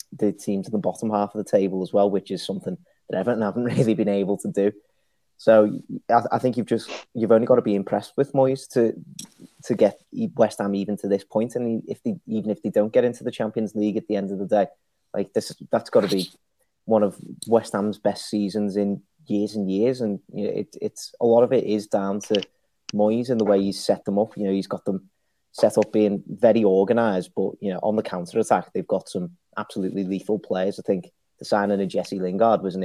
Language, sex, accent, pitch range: English, male, British, 100-115 Hz